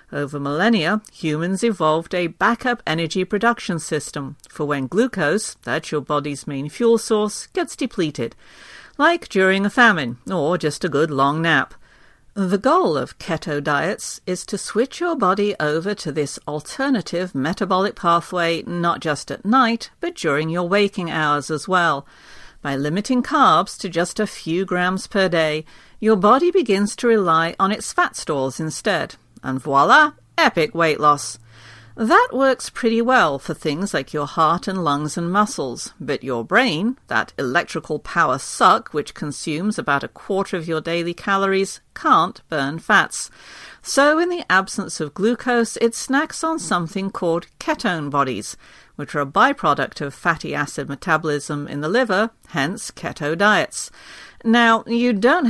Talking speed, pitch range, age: 155 wpm, 155-220 Hz, 50-69